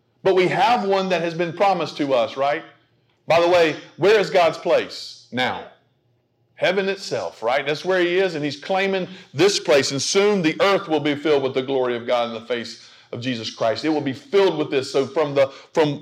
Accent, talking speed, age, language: American, 220 wpm, 50-69, English